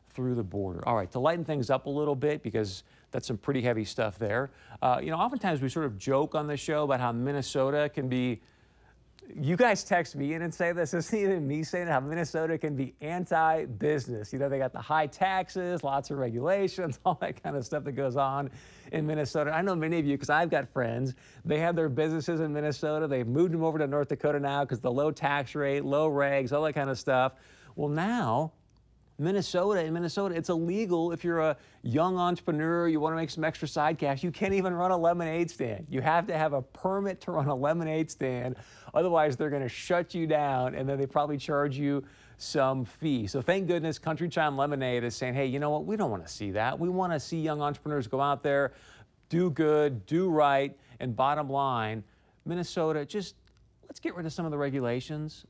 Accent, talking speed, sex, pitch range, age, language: American, 215 wpm, male, 135-165 Hz, 50-69, English